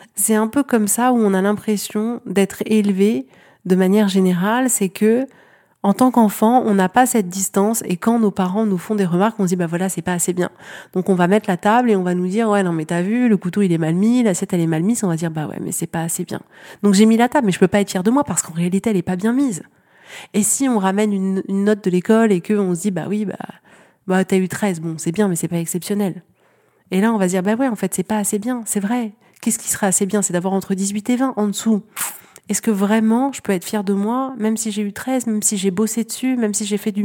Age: 30-49